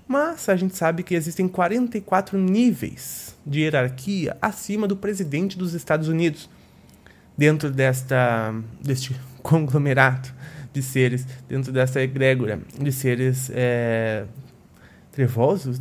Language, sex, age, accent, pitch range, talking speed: Portuguese, male, 20-39, Brazilian, 125-160 Hz, 105 wpm